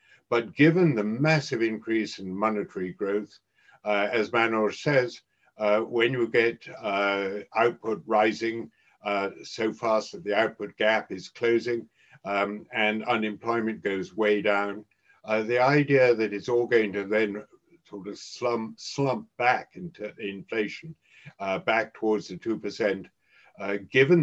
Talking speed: 140 wpm